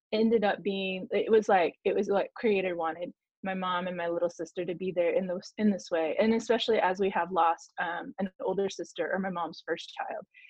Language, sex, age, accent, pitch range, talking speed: English, female, 20-39, American, 185-230 Hz, 225 wpm